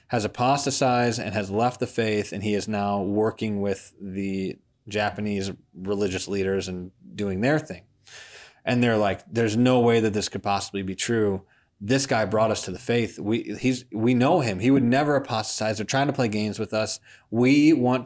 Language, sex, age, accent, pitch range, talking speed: English, male, 20-39, American, 100-120 Hz, 195 wpm